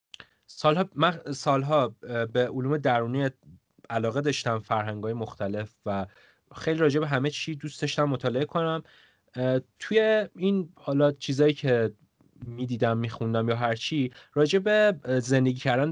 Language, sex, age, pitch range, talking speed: Persian, male, 30-49, 110-150 Hz, 120 wpm